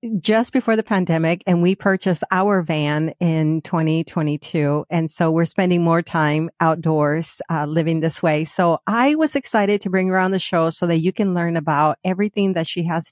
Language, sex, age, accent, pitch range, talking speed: English, female, 40-59, American, 160-185 Hz, 190 wpm